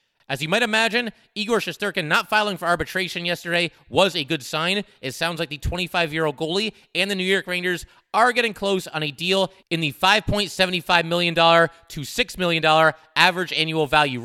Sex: male